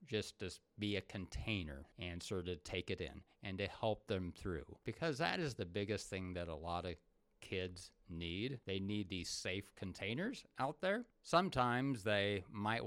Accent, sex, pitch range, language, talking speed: American, male, 95-115 Hz, English, 175 wpm